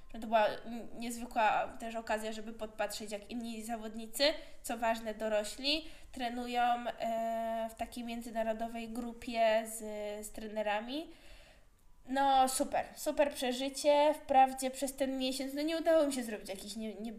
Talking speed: 120 wpm